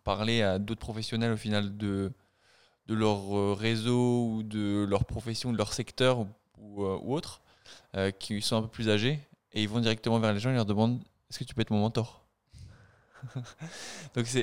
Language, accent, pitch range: French, French, 100-120 Hz